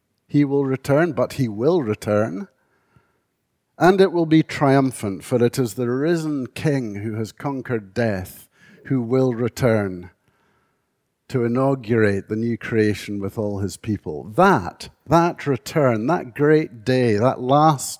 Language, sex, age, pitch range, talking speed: English, male, 50-69, 105-135 Hz, 140 wpm